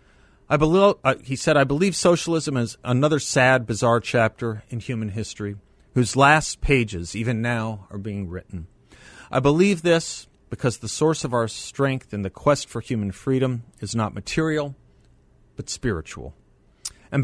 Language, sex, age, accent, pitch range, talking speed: English, male, 40-59, American, 105-135 Hz, 155 wpm